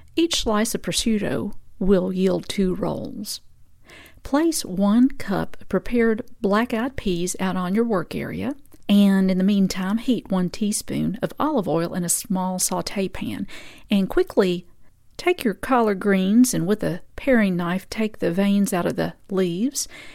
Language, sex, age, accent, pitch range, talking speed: English, female, 50-69, American, 185-230 Hz, 160 wpm